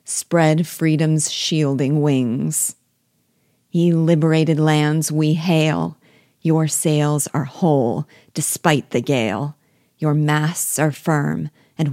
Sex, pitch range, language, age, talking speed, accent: female, 145-160 Hz, English, 40-59, 105 wpm, American